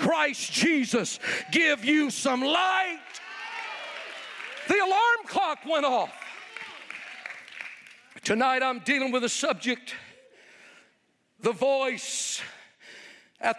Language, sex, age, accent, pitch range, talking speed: English, male, 50-69, American, 255-345 Hz, 90 wpm